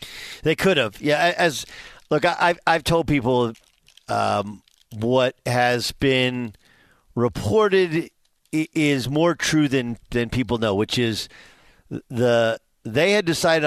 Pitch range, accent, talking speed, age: 120-150 Hz, American, 125 wpm, 50-69